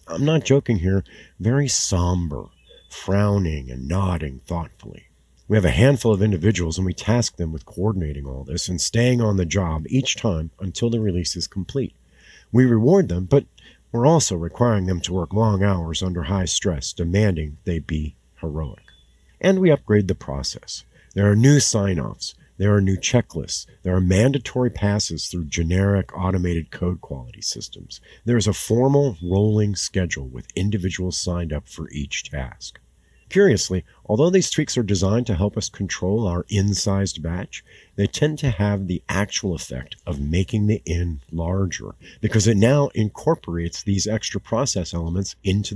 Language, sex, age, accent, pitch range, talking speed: English, male, 50-69, American, 85-110 Hz, 165 wpm